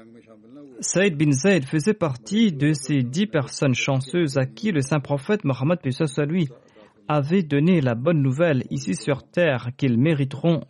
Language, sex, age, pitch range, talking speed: French, male, 40-59, 120-150 Hz, 155 wpm